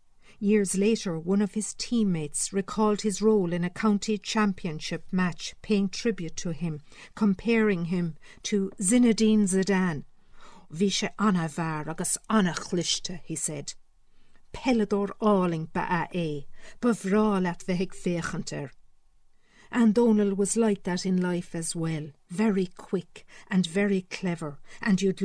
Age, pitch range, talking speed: 50-69, 175-210 Hz, 125 wpm